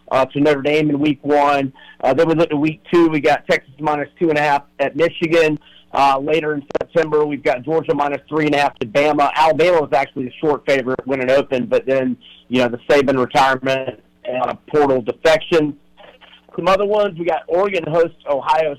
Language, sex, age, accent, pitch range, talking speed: English, male, 50-69, American, 135-160 Hz, 195 wpm